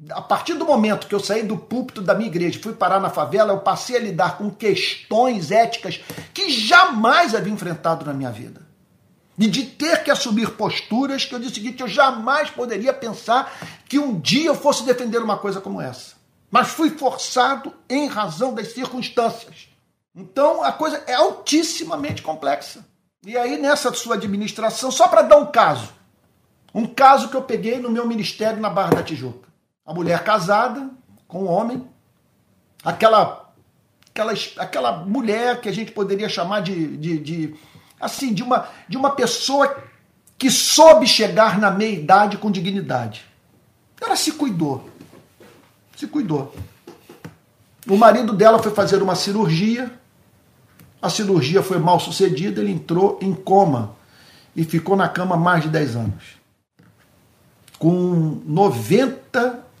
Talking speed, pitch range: 155 wpm, 175-250 Hz